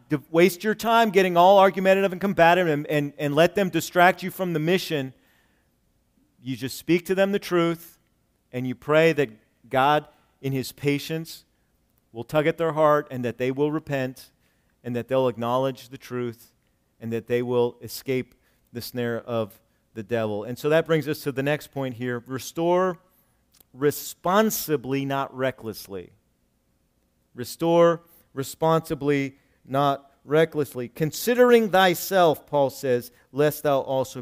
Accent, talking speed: American, 150 wpm